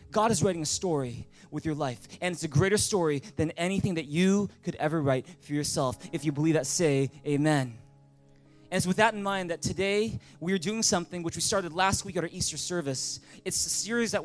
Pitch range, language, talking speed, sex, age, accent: 155-205 Hz, English, 225 wpm, male, 20-39, American